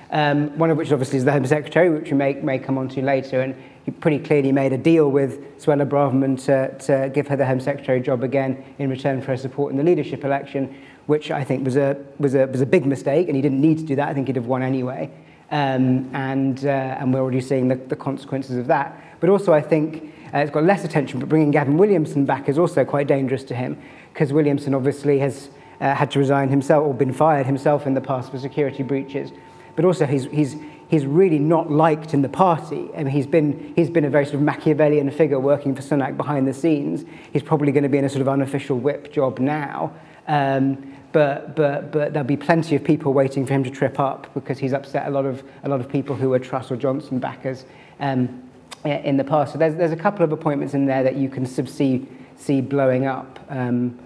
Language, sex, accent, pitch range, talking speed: English, male, British, 135-150 Hz, 240 wpm